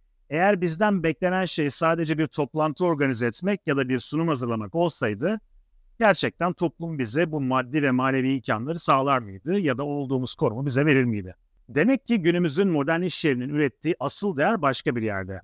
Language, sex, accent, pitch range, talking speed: Turkish, male, native, 120-175 Hz, 170 wpm